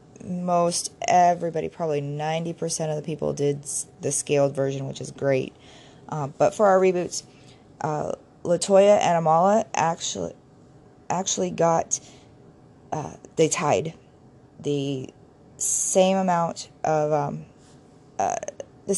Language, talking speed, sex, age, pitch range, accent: English, 115 wpm, female, 20-39, 140-170 Hz, American